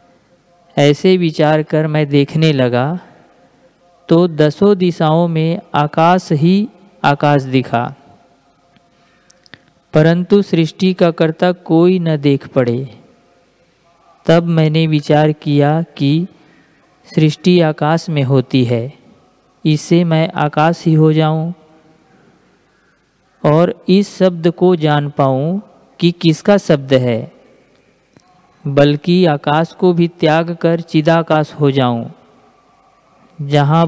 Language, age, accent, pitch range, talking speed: Hindi, 40-59, native, 150-175 Hz, 105 wpm